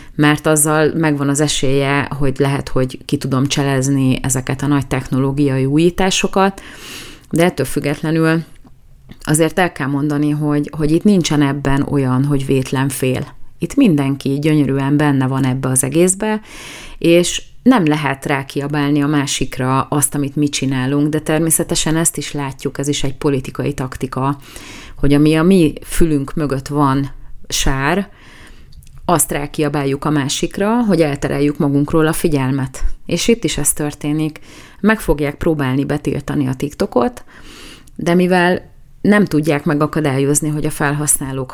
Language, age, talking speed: Hungarian, 30-49, 140 wpm